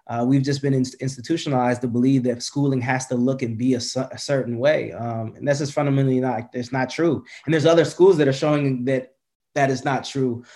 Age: 20-39